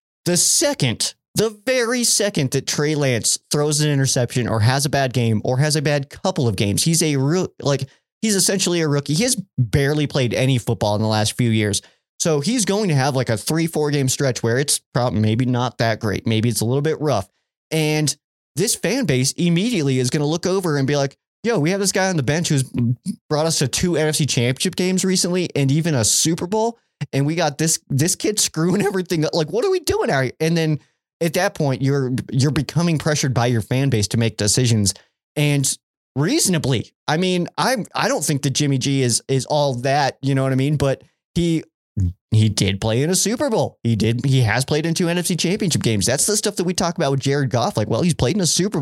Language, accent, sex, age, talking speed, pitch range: English, American, male, 20-39, 230 wpm, 130-170 Hz